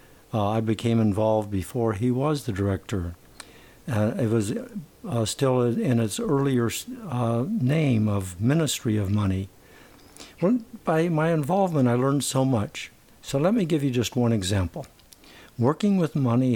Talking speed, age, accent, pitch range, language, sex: 150 wpm, 60-79, American, 105-135 Hz, English, male